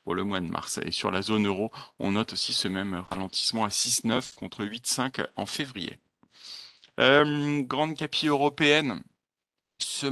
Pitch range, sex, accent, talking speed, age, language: 100-125 Hz, male, French, 165 wpm, 40-59, French